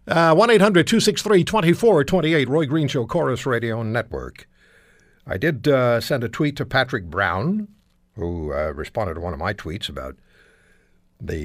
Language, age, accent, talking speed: English, 60-79, American, 135 wpm